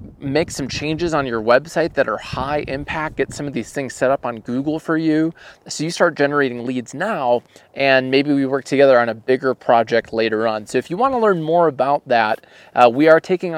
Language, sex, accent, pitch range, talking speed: English, male, American, 125-160 Hz, 220 wpm